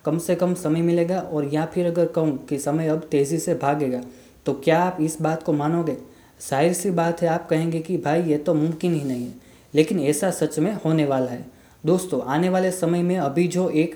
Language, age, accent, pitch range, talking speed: Hindi, 20-39, native, 150-175 Hz, 225 wpm